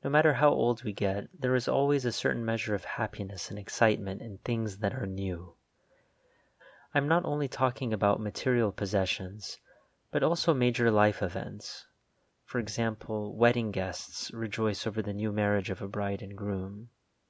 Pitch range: 100-120 Hz